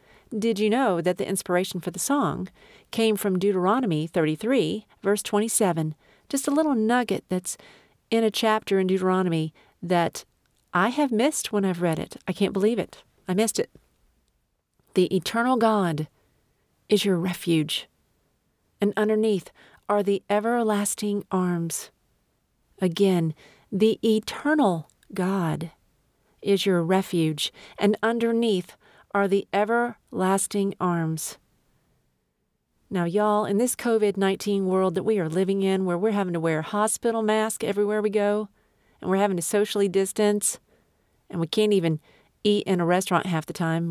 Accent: American